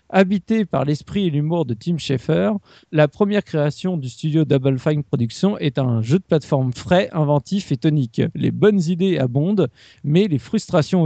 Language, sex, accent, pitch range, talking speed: French, male, French, 145-190 Hz, 175 wpm